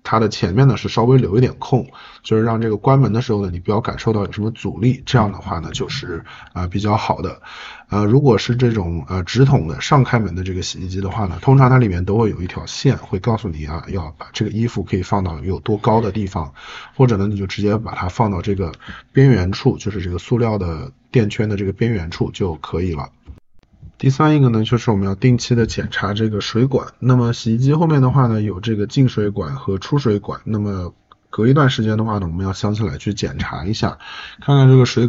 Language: Chinese